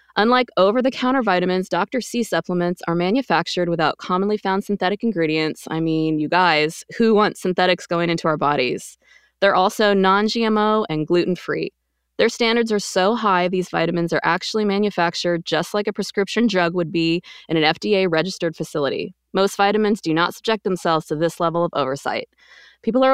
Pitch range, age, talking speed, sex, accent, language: 170-210 Hz, 20-39, 165 wpm, female, American, English